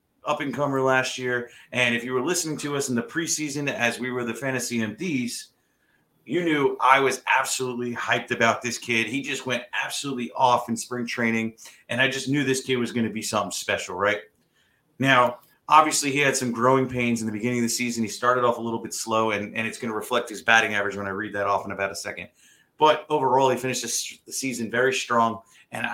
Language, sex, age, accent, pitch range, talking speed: English, male, 30-49, American, 120-145 Hz, 220 wpm